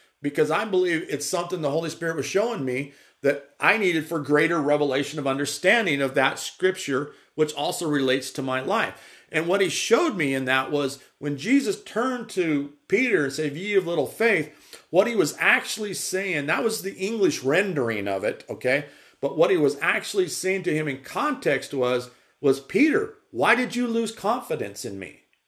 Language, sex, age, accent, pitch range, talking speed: English, male, 40-59, American, 150-210 Hz, 190 wpm